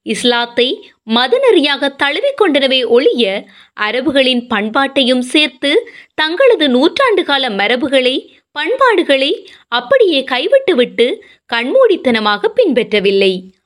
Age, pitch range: 20-39, 230-390 Hz